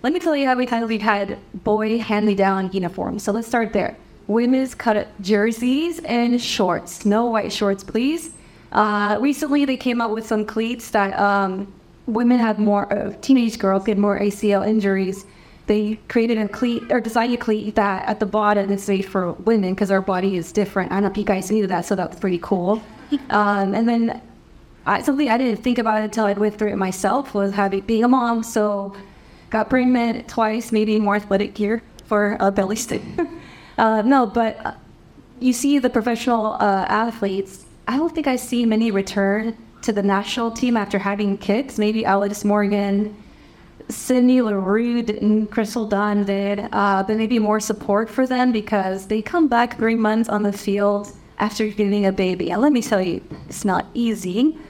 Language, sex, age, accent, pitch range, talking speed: Spanish, female, 20-39, American, 200-230 Hz, 190 wpm